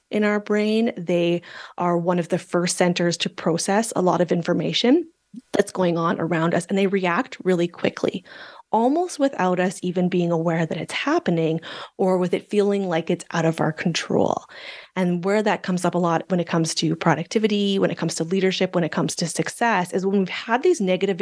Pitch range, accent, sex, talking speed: 170-205 Hz, American, female, 205 wpm